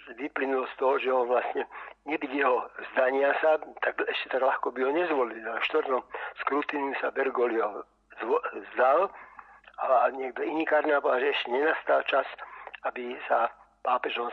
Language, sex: Slovak, male